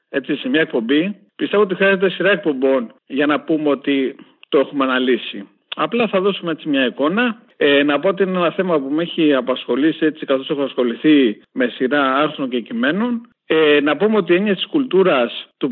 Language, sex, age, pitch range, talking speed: English, male, 50-69, 140-185 Hz, 195 wpm